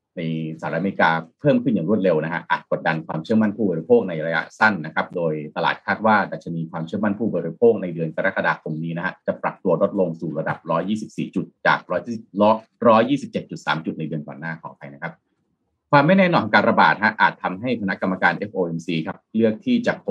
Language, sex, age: Thai, male, 30-49